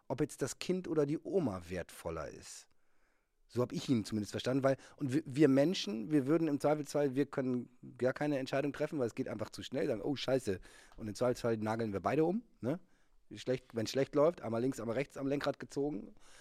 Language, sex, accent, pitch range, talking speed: German, male, German, 125-155 Hz, 210 wpm